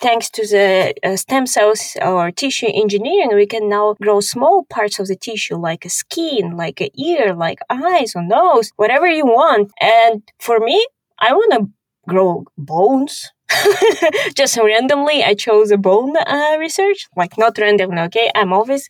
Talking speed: 170 wpm